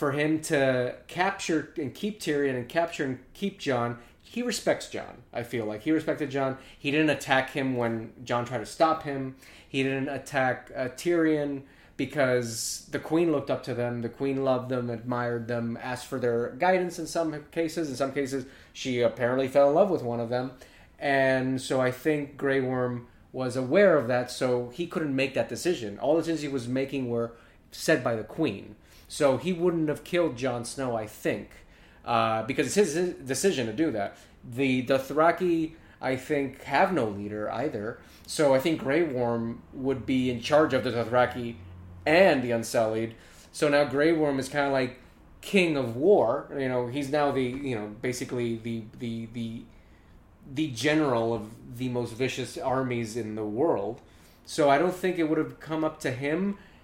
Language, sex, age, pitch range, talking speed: English, male, 30-49, 120-150 Hz, 190 wpm